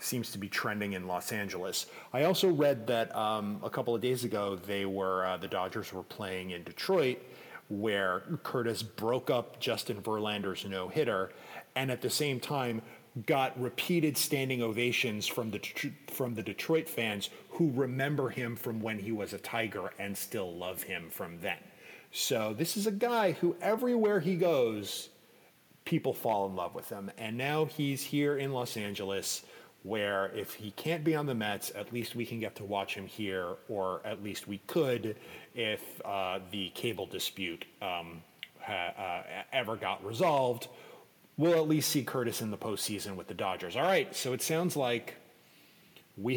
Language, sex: English, male